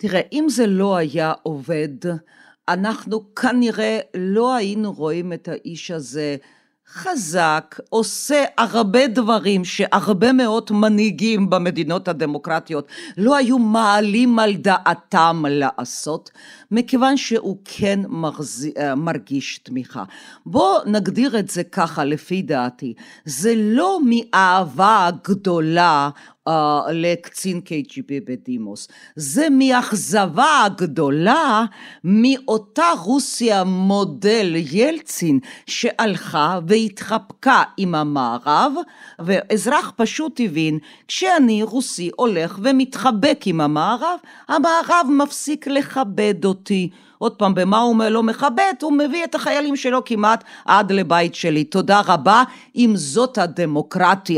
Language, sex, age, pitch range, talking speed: Hebrew, female, 50-69, 170-250 Hz, 105 wpm